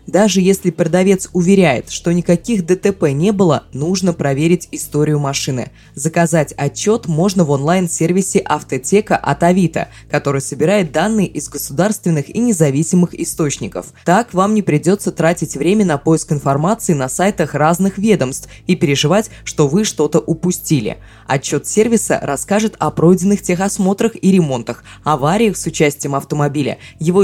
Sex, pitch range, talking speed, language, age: female, 145-190 Hz, 135 wpm, Russian, 20-39